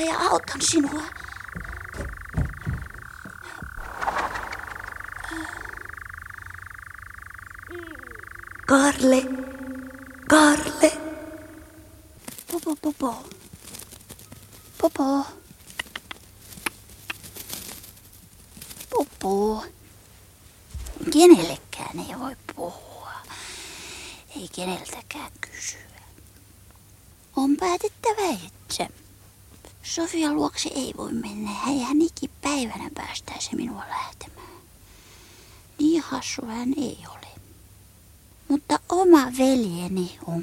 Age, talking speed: 30-49, 60 wpm